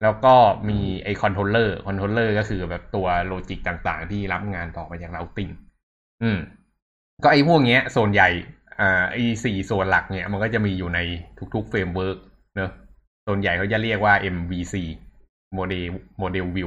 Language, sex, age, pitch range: Thai, male, 20-39, 90-115 Hz